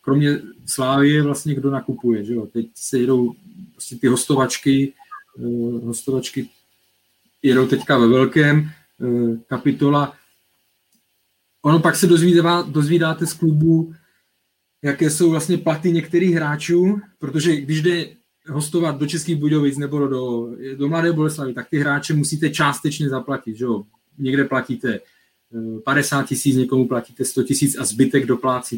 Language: Czech